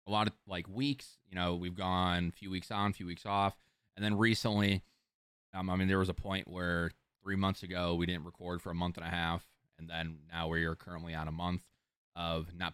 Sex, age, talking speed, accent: male, 20-39, 240 wpm, American